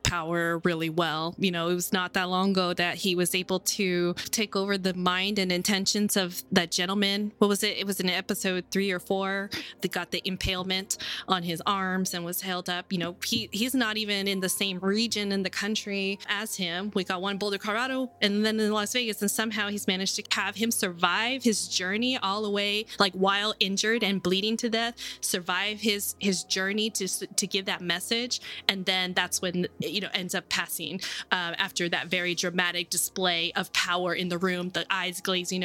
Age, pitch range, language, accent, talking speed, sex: 20-39, 180-210 Hz, English, American, 210 wpm, female